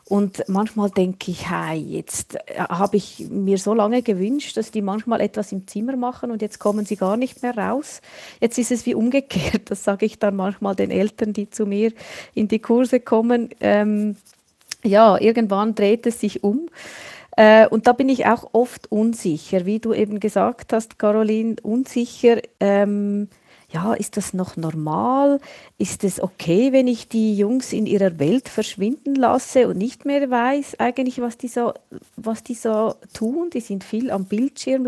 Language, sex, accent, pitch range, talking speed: German, female, Swiss, 200-240 Hz, 175 wpm